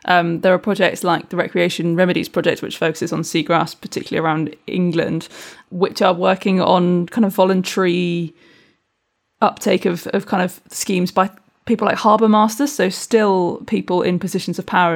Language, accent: English, British